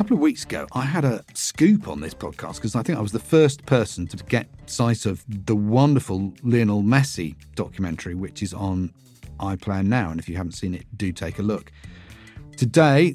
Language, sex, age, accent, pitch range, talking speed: English, male, 40-59, British, 95-120 Hz, 205 wpm